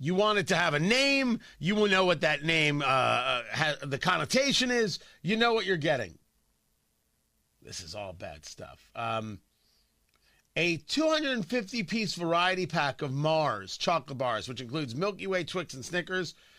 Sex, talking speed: male, 155 wpm